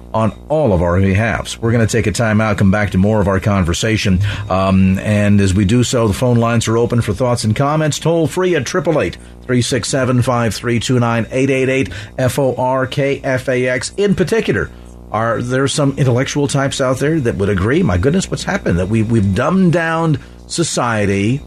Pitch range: 100-140 Hz